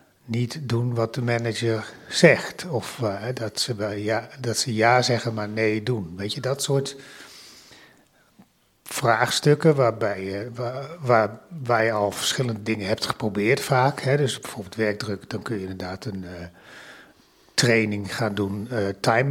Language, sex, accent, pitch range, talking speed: Dutch, male, Dutch, 105-130 Hz, 155 wpm